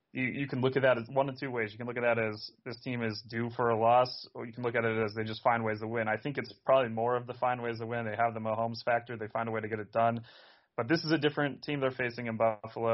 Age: 30-49